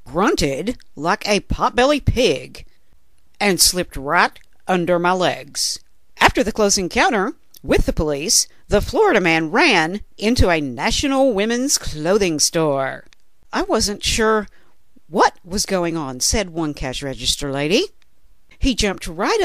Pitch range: 165-255 Hz